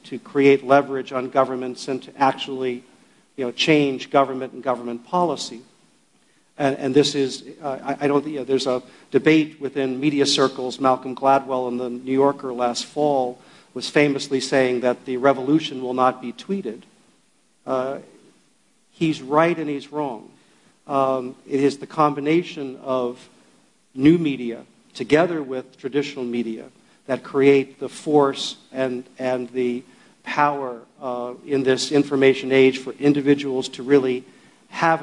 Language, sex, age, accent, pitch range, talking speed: English, male, 50-69, American, 130-145 Hz, 145 wpm